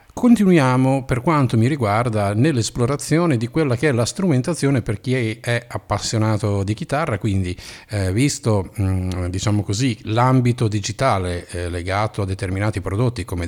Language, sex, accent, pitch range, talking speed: Italian, male, native, 100-135 Hz, 140 wpm